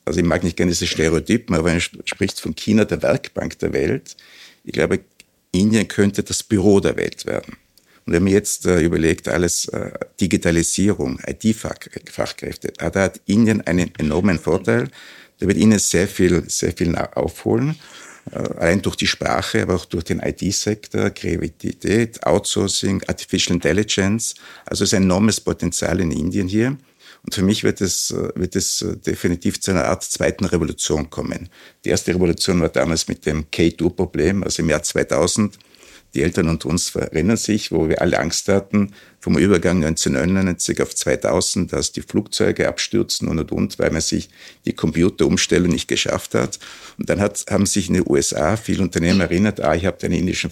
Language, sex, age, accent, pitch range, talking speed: German, male, 60-79, Austrian, 85-105 Hz, 170 wpm